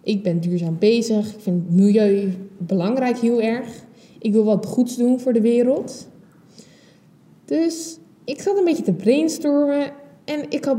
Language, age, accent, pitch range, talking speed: Dutch, 20-39, Dutch, 195-265 Hz, 160 wpm